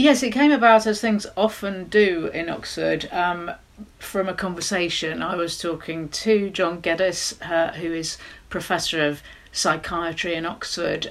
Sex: female